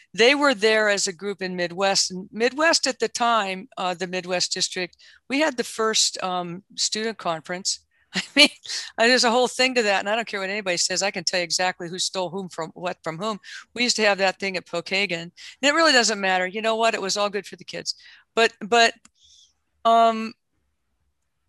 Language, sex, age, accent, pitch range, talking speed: English, female, 50-69, American, 175-220 Hz, 210 wpm